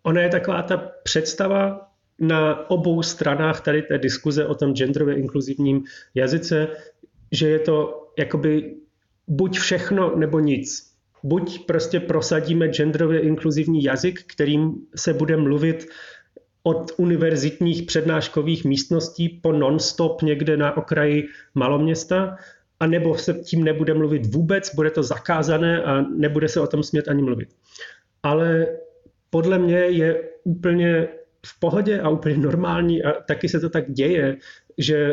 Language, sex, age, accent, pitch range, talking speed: Czech, male, 30-49, native, 150-170 Hz, 135 wpm